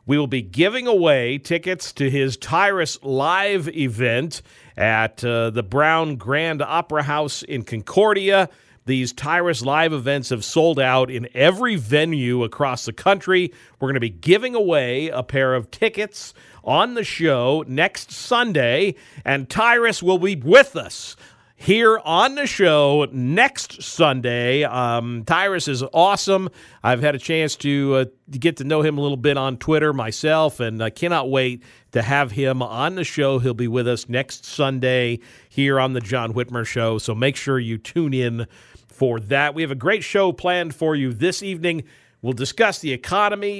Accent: American